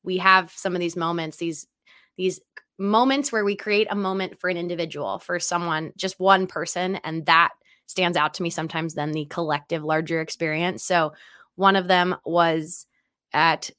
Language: English